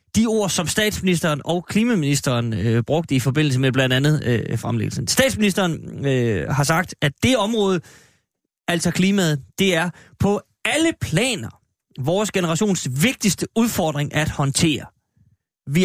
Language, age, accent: Danish, 30-49, native